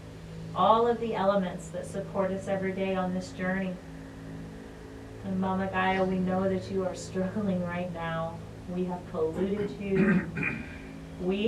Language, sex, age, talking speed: English, female, 30-49, 145 wpm